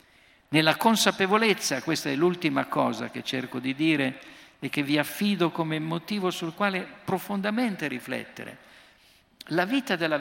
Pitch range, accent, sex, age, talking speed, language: 145-205 Hz, native, male, 50-69, 135 wpm, Italian